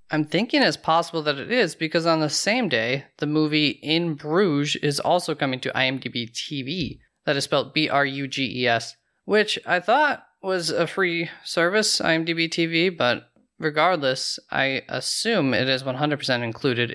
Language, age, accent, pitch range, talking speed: English, 20-39, American, 135-170 Hz, 150 wpm